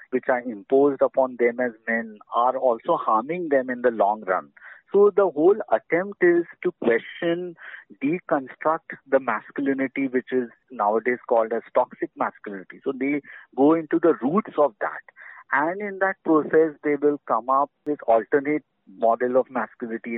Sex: male